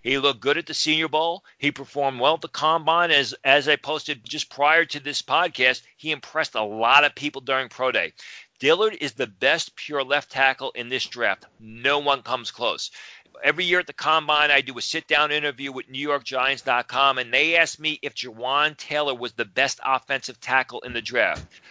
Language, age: English, 40-59